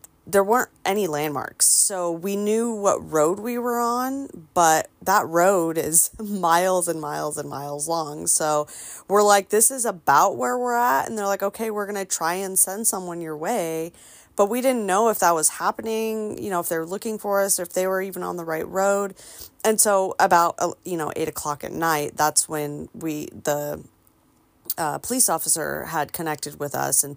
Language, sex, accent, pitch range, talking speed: English, female, American, 150-195 Hz, 195 wpm